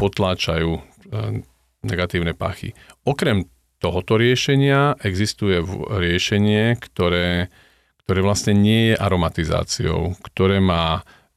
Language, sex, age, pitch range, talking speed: Slovak, male, 40-59, 85-100 Hz, 85 wpm